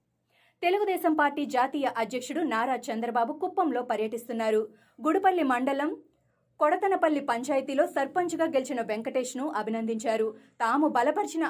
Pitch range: 235-310 Hz